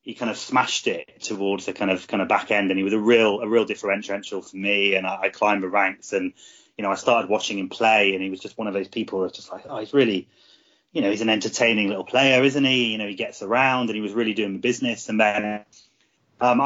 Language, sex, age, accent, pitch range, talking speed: English, male, 30-49, British, 105-130 Hz, 265 wpm